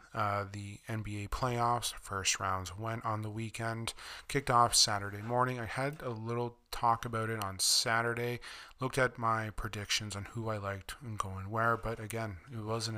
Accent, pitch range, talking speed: American, 105-120 Hz, 180 wpm